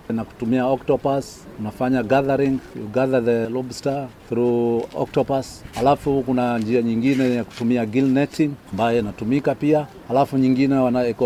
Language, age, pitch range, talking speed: Swahili, 40-59, 120-140 Hz, 130 wpm